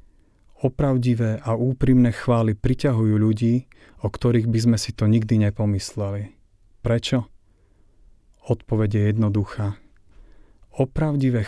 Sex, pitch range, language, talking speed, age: male, 100-115 Hz, Slovak, 100 wpm, 40-59